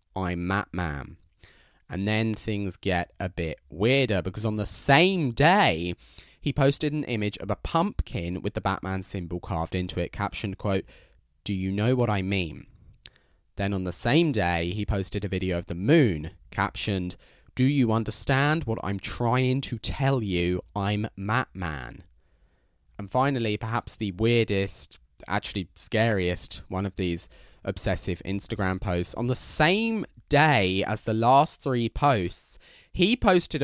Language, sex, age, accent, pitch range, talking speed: English, male, 20-39, British, 85-115 Hz, 150 wpm